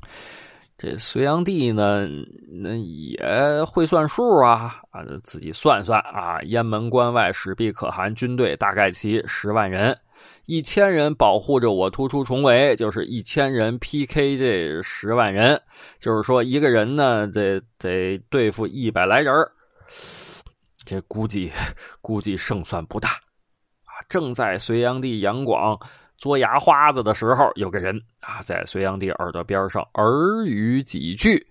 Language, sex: Chinese, male